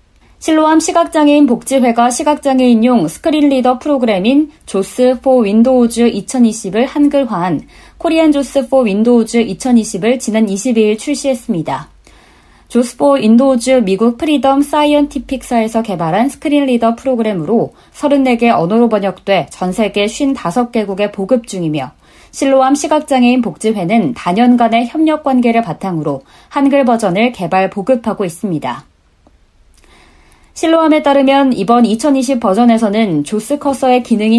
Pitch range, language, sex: 210-270 Hz, Korean, female